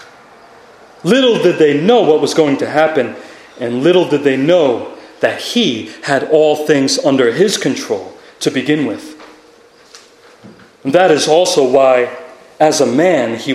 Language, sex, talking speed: English, male, 150 wpm